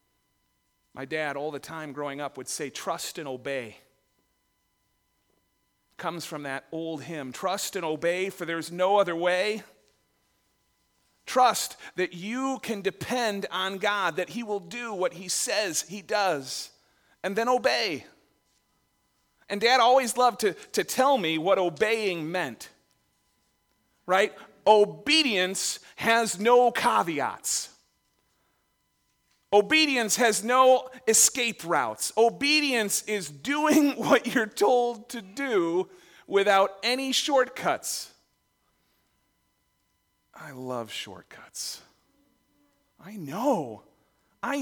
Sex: male